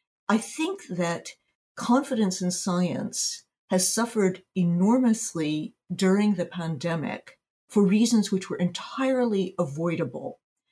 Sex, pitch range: female, 175-215 Hz